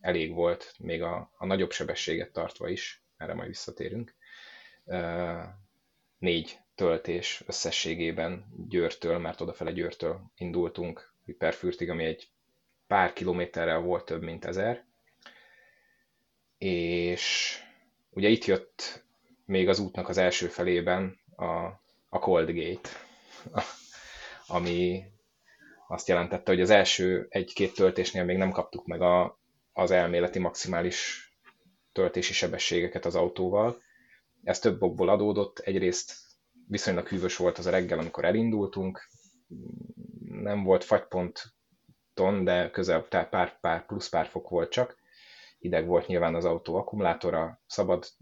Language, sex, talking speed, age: Hungarian, male, 120 wpm, 20-39